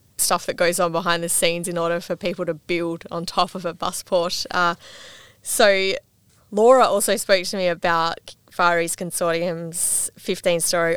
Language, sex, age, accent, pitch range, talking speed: English, female, 20-39, Australian, 165-185 Hz, 170 wpm